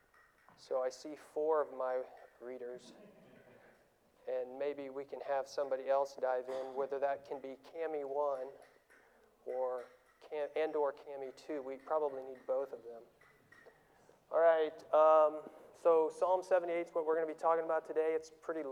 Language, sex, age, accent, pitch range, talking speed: English, male, 40-59, American, 140-170 Hz, 165 wpm